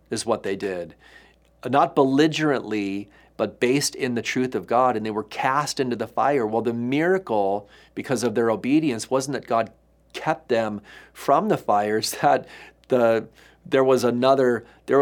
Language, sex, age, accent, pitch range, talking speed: English, male, 40-59, American, 120-145 Hz, 165 wpm